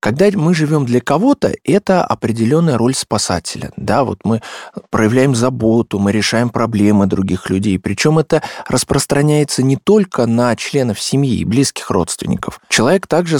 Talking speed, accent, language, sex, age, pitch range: 140 wpm, native, Russian, male, 20-39, 115-170 Hz